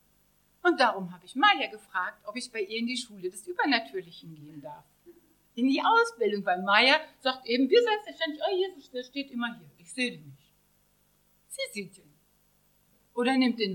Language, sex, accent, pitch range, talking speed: German, female, German, 185-275 Hz, 190 wpm